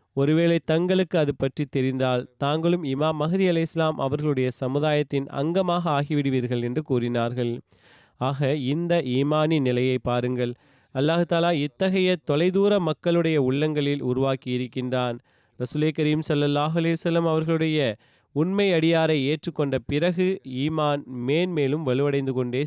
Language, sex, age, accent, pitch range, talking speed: Tamil, male, 30-49, native, 130-160 Hz, 105 wpm